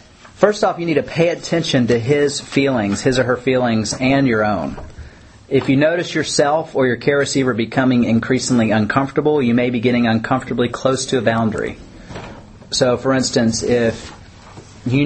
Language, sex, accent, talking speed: English, male, American, 165 wpm